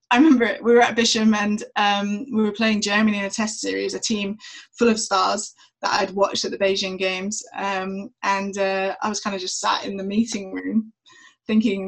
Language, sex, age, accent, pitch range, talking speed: English, female, 20-39, British, 205-250 Hz, 215 wpm